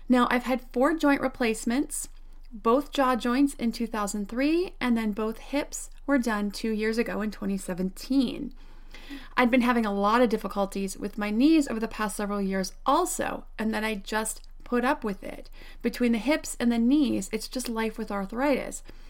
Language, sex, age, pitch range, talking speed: English, female, 30-49, 205-265 Hz, 180 wpm